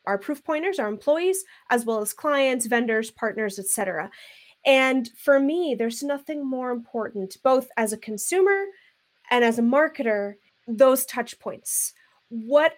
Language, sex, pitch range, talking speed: English, female, 240-310 Hz, 145 wpm